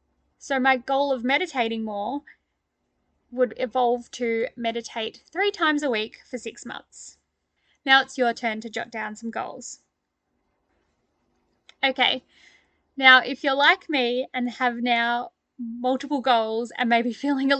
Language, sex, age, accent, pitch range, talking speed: English, female, 10-29, Australian, 235-265 Hz, 140 wpm